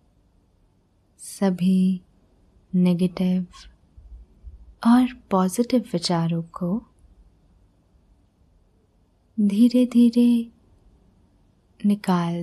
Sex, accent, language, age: female, native, Hindi, 20-39